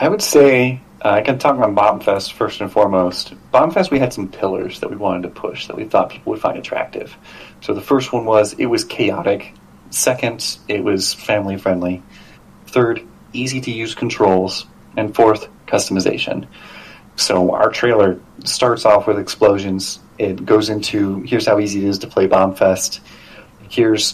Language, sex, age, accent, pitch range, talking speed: English, male, 30-49, American, 95-120 Hz, 165 wpm